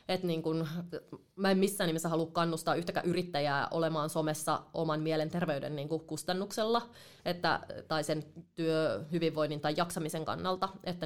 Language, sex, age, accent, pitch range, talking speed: Finnish, female, 20-39, native, 155-175 Hz, 130 wpm